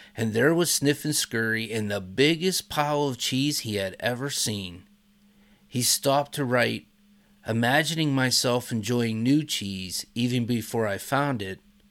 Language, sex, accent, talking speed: English, male, American, 150 wpm